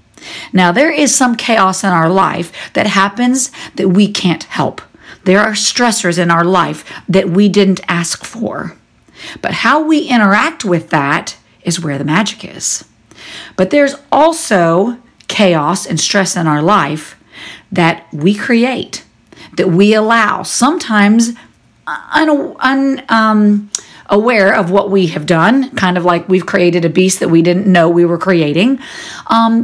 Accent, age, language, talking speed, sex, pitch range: American, 50-69, English, 155 wpm, female, 175-230 Hz